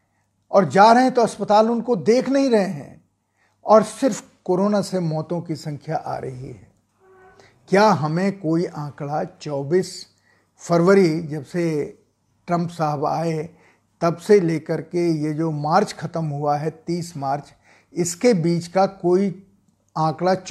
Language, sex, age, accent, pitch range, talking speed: Hindi, male, 50-69, native, 150-200 Hz, 145 wpm